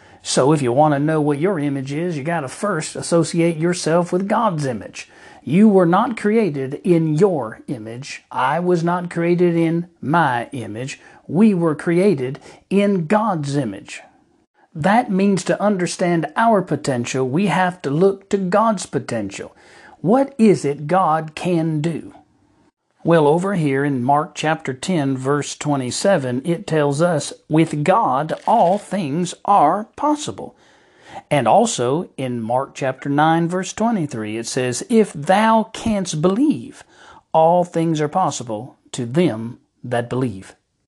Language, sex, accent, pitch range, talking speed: English, male, American, 140-185 Hz, 145 wpm